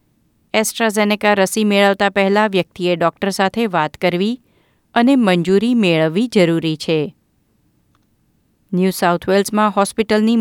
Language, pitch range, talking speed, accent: Gujarati, 175-215 Hz, 100 wpm, native